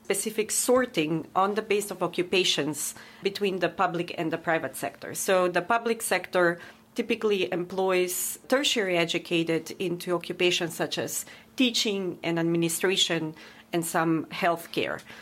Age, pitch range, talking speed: 40-59, 170-200 Hz, 125 wpm